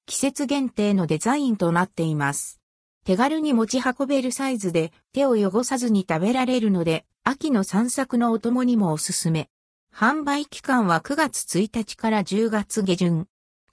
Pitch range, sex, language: 170-255 Hz, female, Japanese